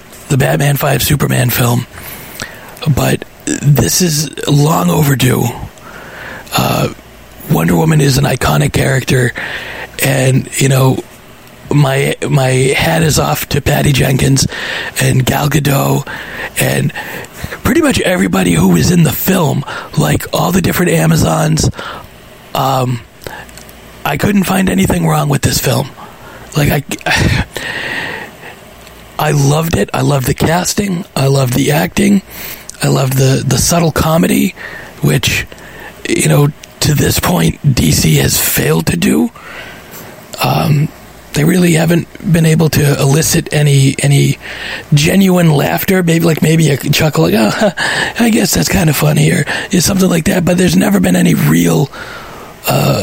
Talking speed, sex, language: 140 wpm, male, English